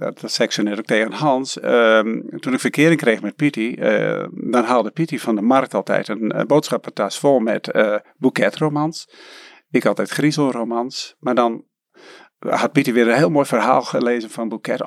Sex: male